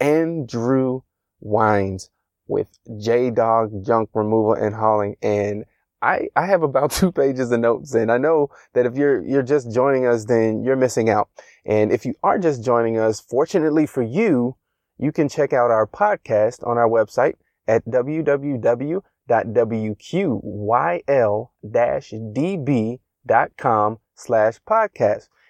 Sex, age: male, 20-39